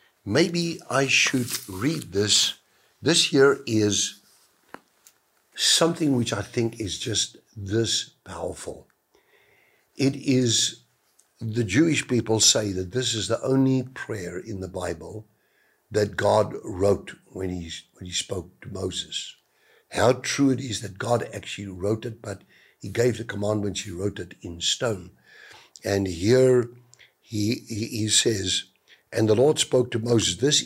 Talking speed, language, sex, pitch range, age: 140 wpm, English, male, 95-125 Hz, 60-79